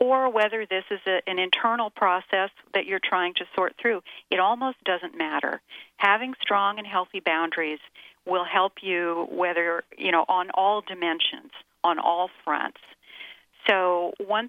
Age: 50-69